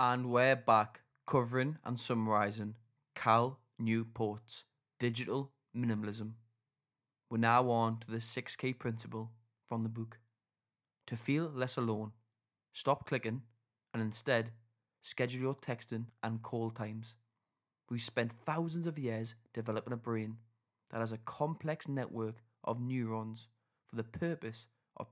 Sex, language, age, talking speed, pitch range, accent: male, English, 20-39, 125 wpm, 115-125 Hz, British